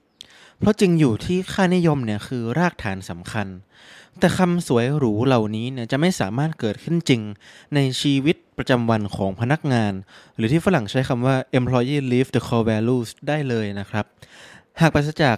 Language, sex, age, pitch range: Thai, male, 20-39, 110-150 Hz